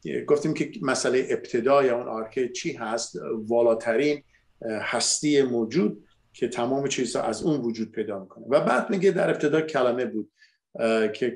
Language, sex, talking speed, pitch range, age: Persian, male, 150 wpm, 115-145 Hz, 50-69